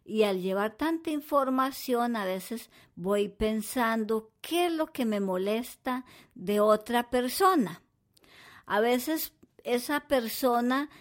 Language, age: Swedish, 50-69